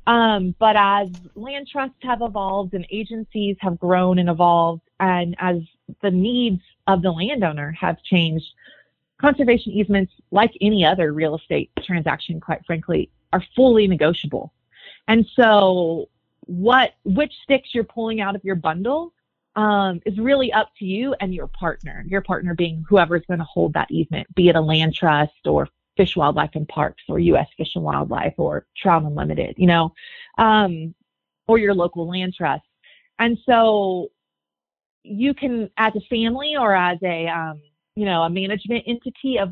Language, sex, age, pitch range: English, female, 30-49, 175-225 Hz